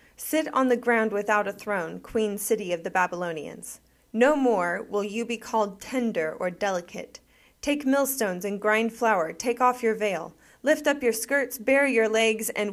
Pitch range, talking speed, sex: 210-250 Hz, 180 wpm, female